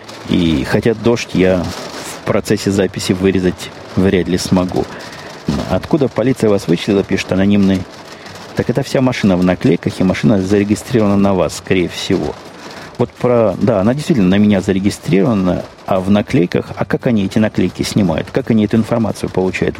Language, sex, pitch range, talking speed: Russian, male, 95-110 Hz, 160 wpm